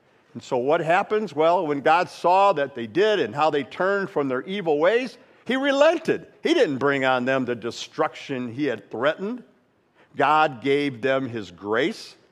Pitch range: 145-215 Hz